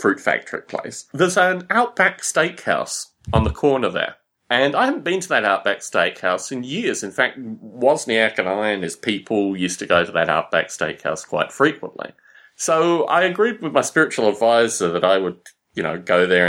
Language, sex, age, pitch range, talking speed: English, male, 30-49, 95-155 Hz, 190 wpm